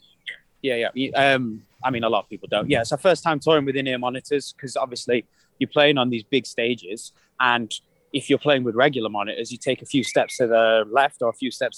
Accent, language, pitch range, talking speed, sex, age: British, English, 125-155 Hz, 235 wpm, male, 20-39